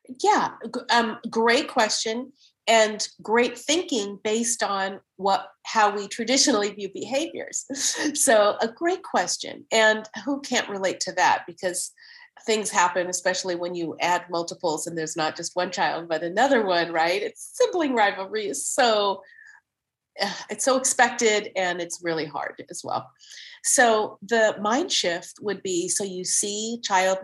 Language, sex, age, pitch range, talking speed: English, female, 40-59, 170-230 Hz, 150 wpm